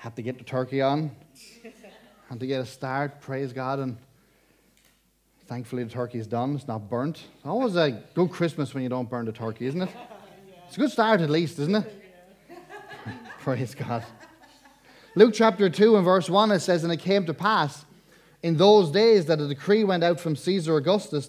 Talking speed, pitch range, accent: 190 wpm, 145-195 Hz, Irish